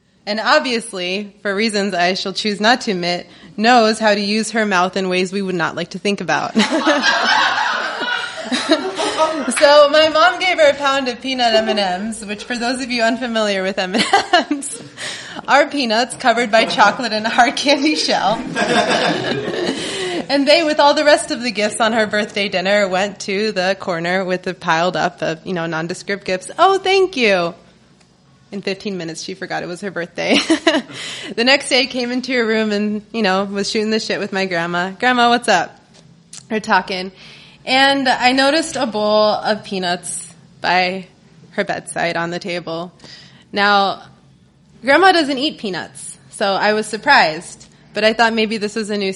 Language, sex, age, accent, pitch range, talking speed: English, female, 20-39, American, 190-260 Hz, 175 wpm